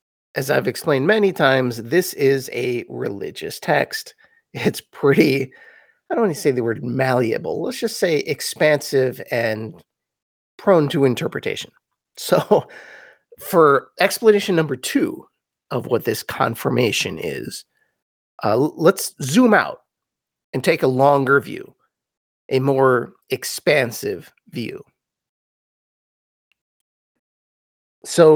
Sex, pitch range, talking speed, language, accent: male, 130-190 Hz, 110 wpm, English, American